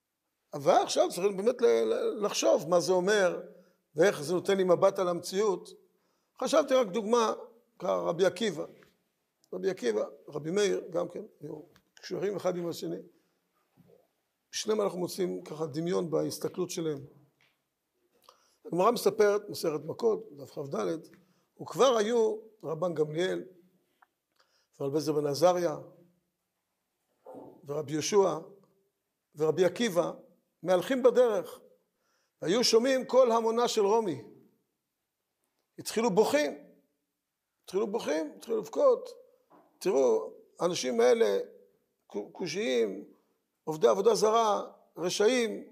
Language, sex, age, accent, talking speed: Hebrew, male, 50-69, native, 100 wpm